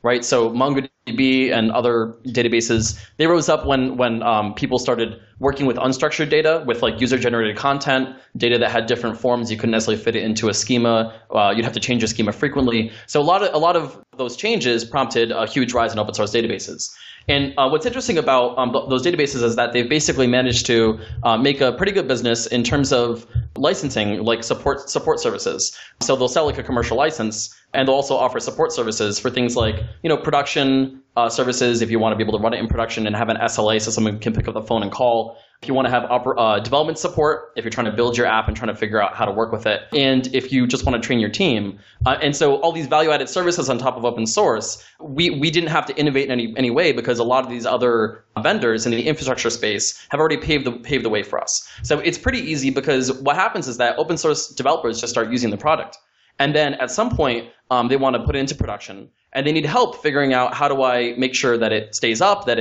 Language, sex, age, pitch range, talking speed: English, male, 20-39, 115-140 Hz, 245 wpm